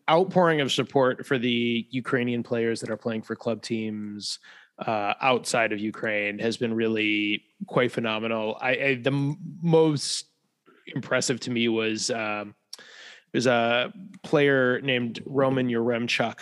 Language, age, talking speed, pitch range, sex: English, 20-39, 130 wpm, 115-140 Hz, male